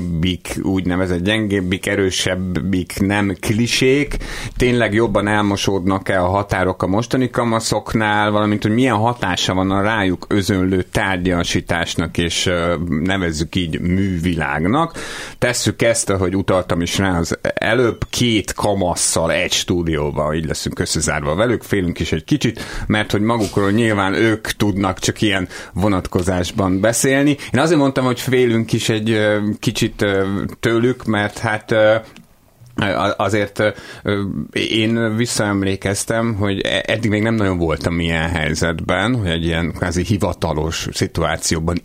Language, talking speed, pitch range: Hungarian, 120 wpm, 85-110 Hz